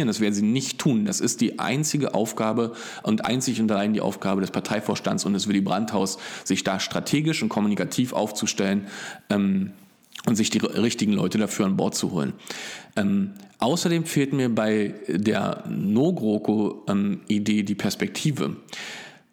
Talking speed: 155 wpm